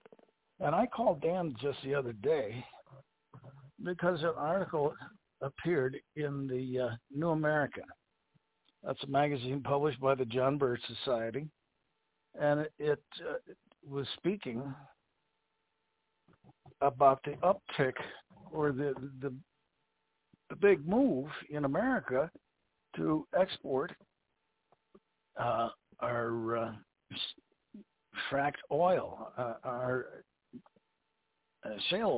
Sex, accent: male, American